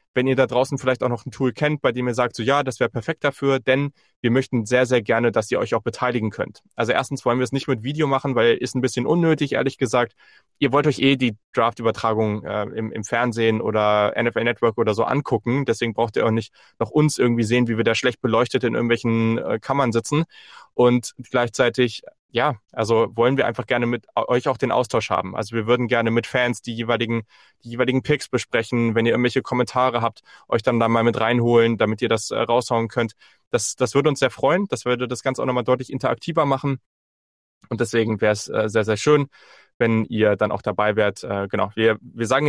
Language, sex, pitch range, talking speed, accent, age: German, male, 115-130 Hz, 225 wpm, German, 20-39